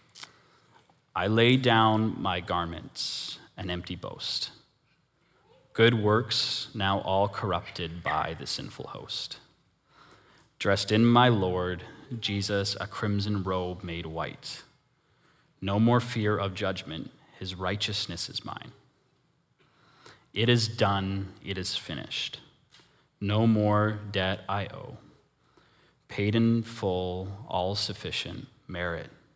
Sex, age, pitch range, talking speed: male, 30-49, 95-115 Hz, 110 wpm